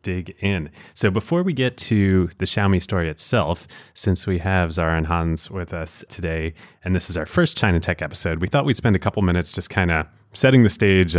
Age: 30-49